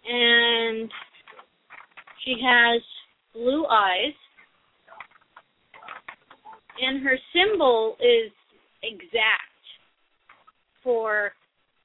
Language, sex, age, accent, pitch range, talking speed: English, female, 30-49, American, 215-285 Hz, 55 wpm